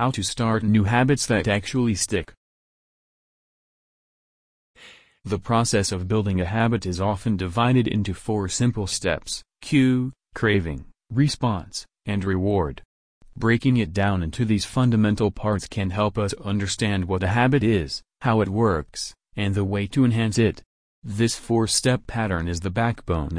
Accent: American